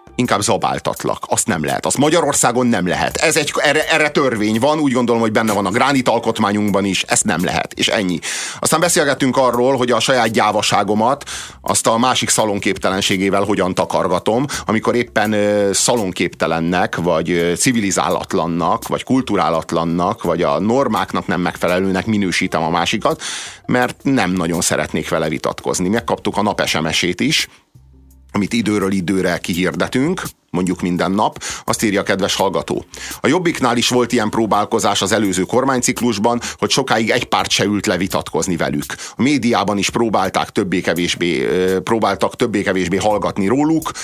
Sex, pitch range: male, 85-110 Hz